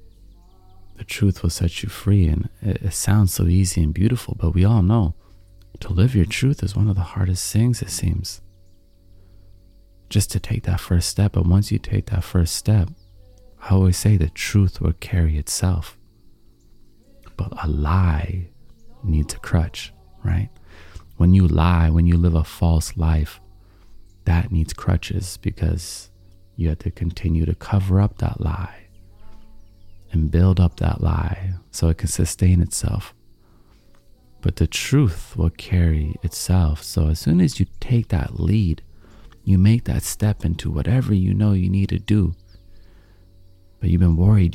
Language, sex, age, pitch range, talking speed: English, male, 30-49, 85-105 Hz, 160 wpm